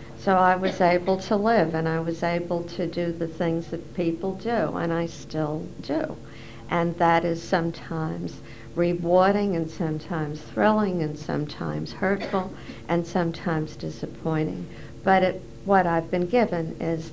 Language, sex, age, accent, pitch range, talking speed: English, female, 60-79, American, 160-185 Hz, 145 wpm